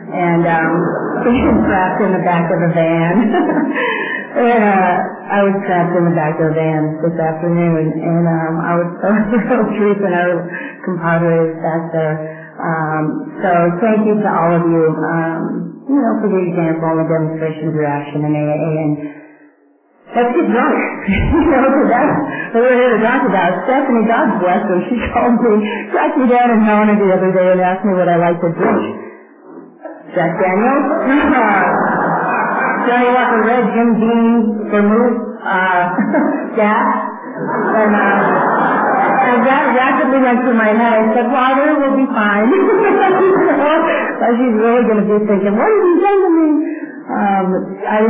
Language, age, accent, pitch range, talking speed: English, 40-59, American, 175-245 Hz, 170 wpm